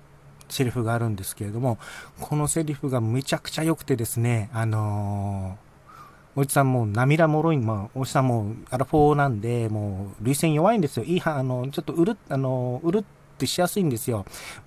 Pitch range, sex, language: 110-160 Hz, male, Japanese